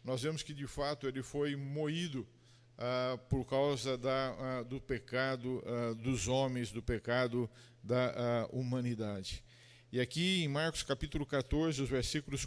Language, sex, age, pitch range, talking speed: Portuguese, male, 50-69, 125-155 Hz, 150 wpm